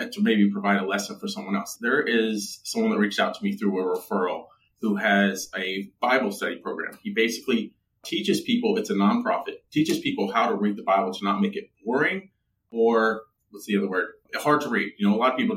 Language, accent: English, American